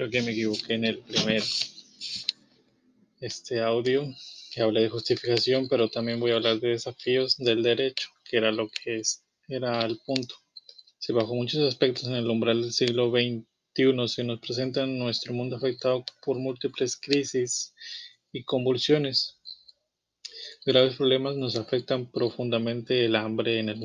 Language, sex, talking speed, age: Spanish, male, 155 wpm, 20-39